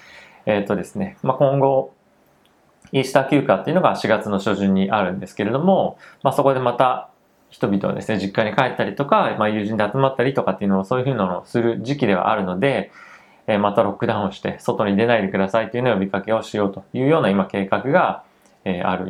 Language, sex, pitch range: Japanese, male, 100-140 Hz